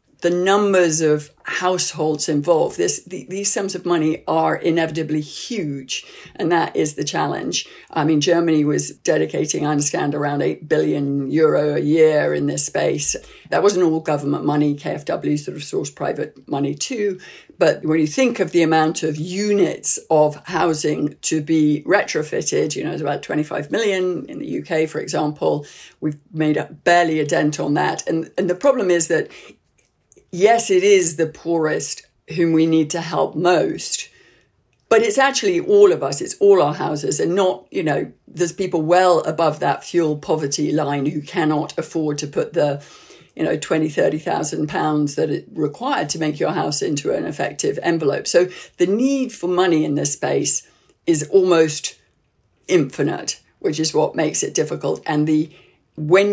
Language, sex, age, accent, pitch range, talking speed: English, female, 50-69, British, 150-180 Hz, 170 wpm